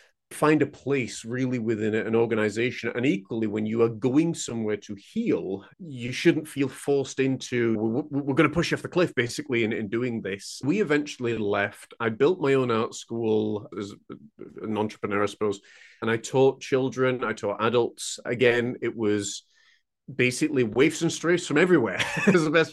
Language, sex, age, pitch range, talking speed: English, male, 30-49, 115-150 Hz, 180 wpm